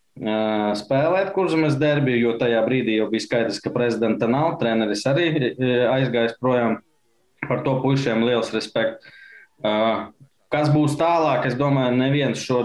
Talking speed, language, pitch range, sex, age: 135 wpm, English, 110-135 Hz, male, 20-39